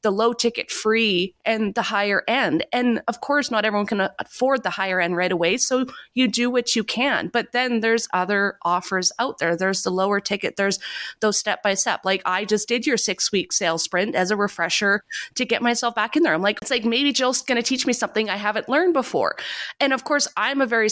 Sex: female